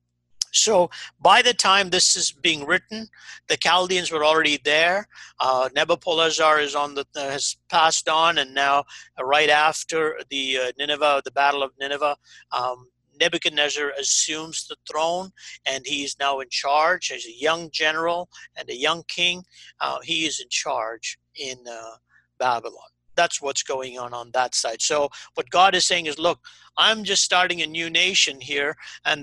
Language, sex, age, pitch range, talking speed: English, male, 50-69, 140-180 Hz, 170 wpm